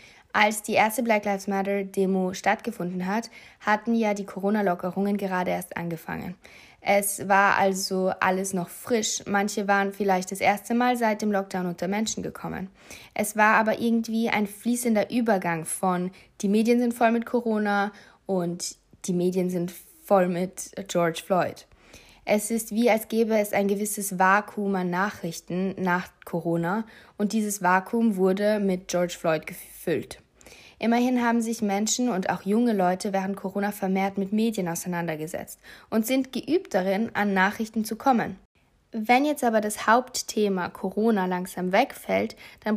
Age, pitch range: 20-39, 185-220 Hz